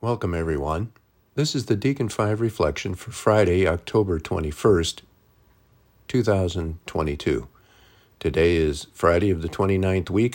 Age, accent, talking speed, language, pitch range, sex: 50-69, American, 115 wpm, English, 90-115 Hz, male